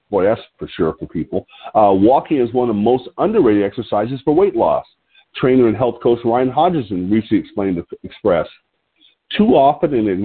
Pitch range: 115-165 Hz